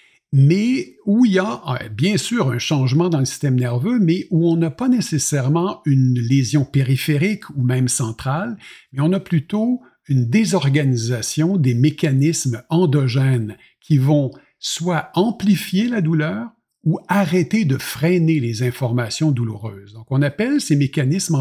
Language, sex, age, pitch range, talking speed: French, male, 50-69, 130-175 Hz, 145 wpm